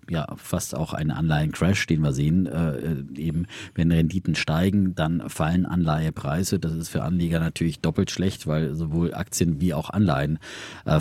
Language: German